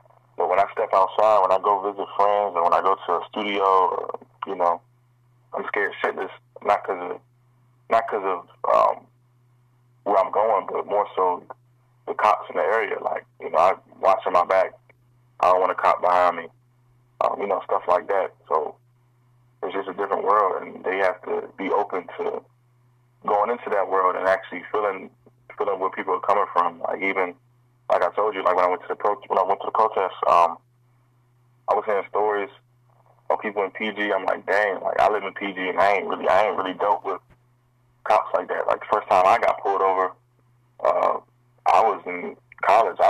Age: 20-39